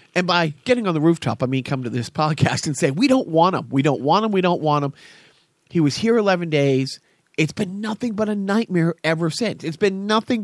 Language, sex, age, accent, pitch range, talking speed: English, male, 40-59, American, 140-175 Hz, 240 wpm